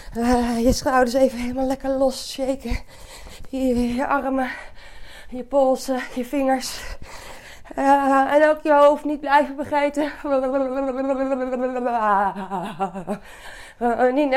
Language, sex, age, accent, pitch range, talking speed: Dutch, female, 20-39, Dutch, 205-285 Hz, 100 wpm